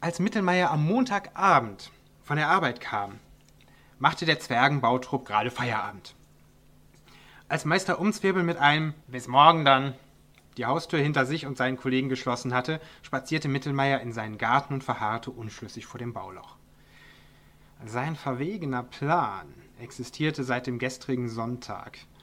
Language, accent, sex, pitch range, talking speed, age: German, German, male, 120-155 Hz, 130 wpm, 30-49